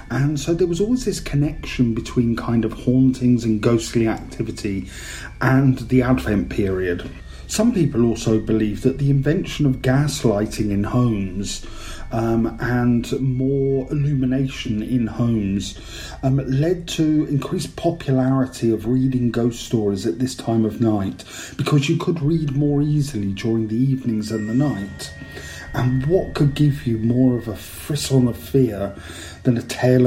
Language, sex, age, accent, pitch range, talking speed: English, male, 40-59, British, 110-135 Hz, 150 wpm